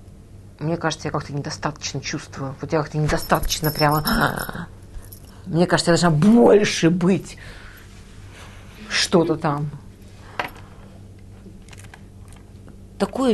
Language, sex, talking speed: Russian, female, 90 wpm